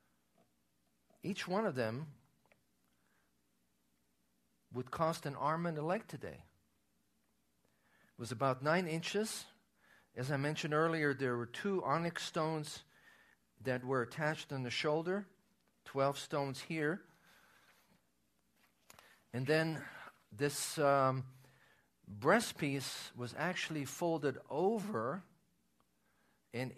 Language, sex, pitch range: English, male, 120-155 Hz